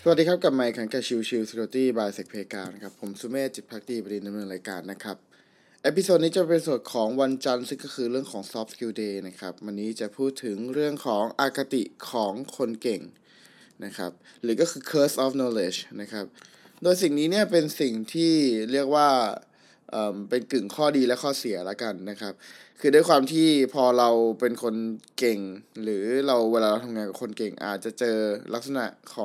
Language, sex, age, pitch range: Thai, male, 20-39, 110-140 Hz